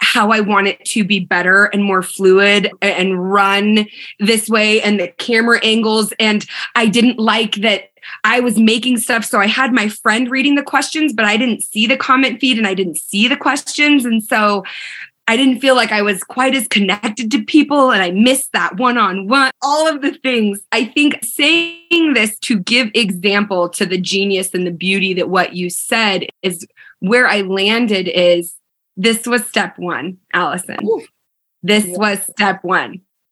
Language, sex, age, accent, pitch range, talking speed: English, female, 20-39, American, 200-255 Hz, 180 wpm